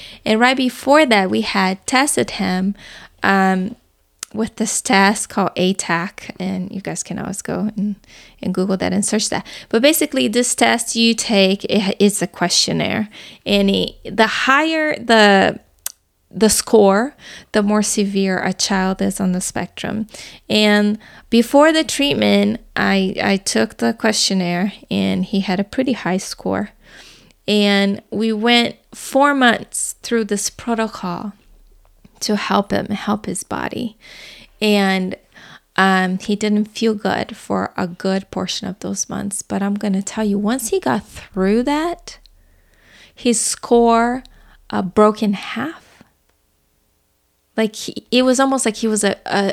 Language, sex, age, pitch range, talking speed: English, female, 20-39, 190-225 Hz, 145 wpm